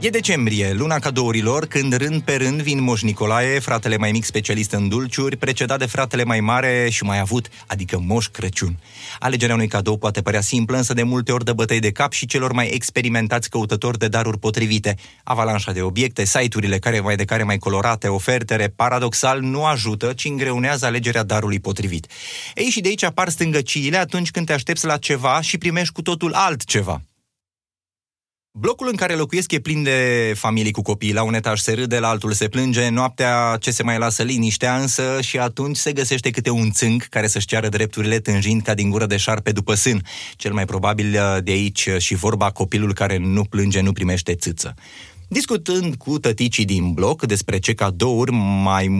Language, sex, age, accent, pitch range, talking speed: Romanian, male, 30-49, native, 105-130 Hz, 190 wpm